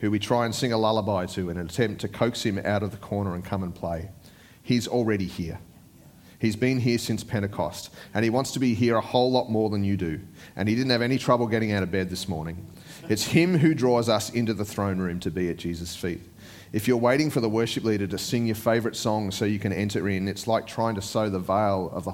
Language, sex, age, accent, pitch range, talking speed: English, male, 30-49, Australian, 90-115 Hz, 255 wpm